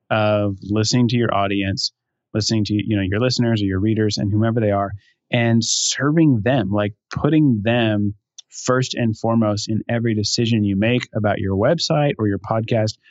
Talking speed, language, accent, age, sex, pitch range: 175 wpm, English, American, 20-39, male, 105-125 Hz